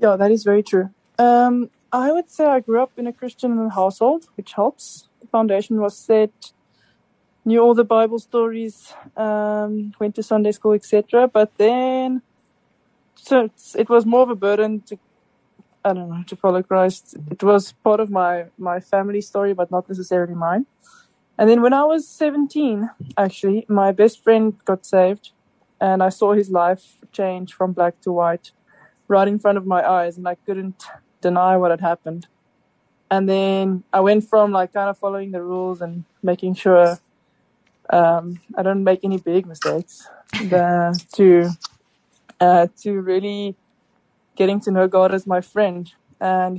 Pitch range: 185-220 Hz